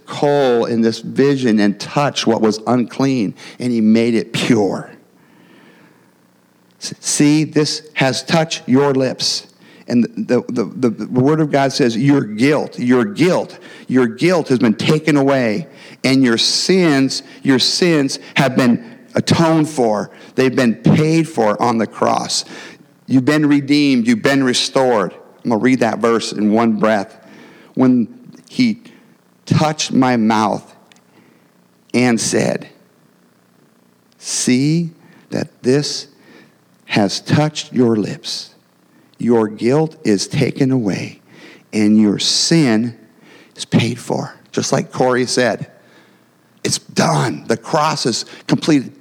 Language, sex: English, male